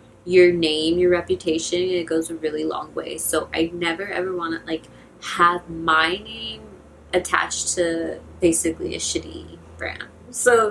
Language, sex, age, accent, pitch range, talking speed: English, female, 20-39, American, 170-225 Hz, 150 wpm